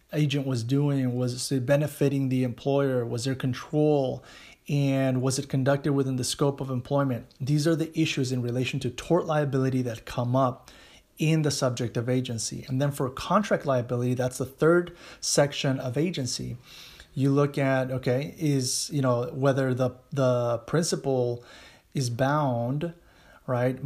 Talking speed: 155 wpm